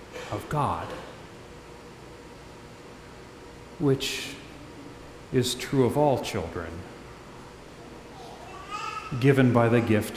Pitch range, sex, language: 120-175 Hz, male, English